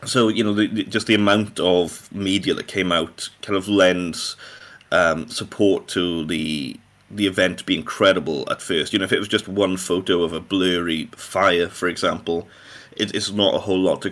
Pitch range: 90-105 Hz